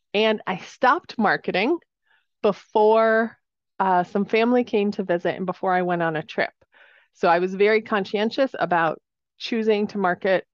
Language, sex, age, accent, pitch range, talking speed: English, female, 30-49, American, 180-225 Hz, 155 wpm